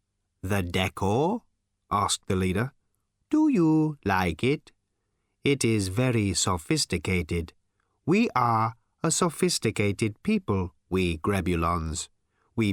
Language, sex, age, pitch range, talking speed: English, male, 30-49, 95-135 Hz, 100 wpm